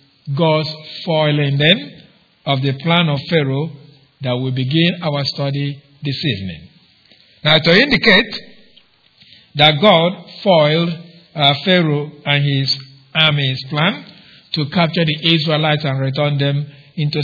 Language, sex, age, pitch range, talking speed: English, male, 50-69, 140-170 Hz, 120 wpm